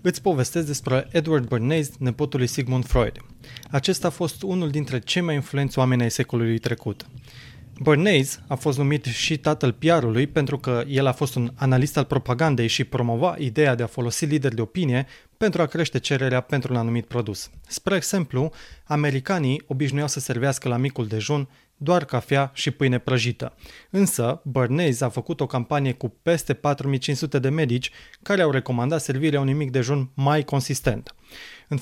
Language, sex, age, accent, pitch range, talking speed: Romanian, male, 20-39, native, 125-155 Hz, 170 wpm